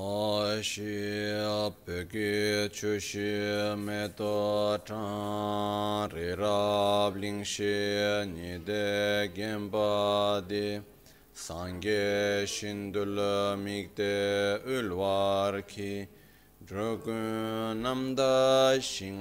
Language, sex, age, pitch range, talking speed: Italian, male, 30-49, 95-110 Hz, 35 wpm